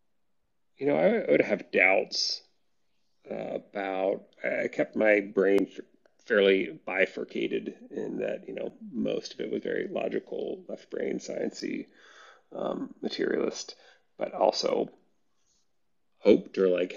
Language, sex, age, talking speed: English, male, 30-49, 125 wpm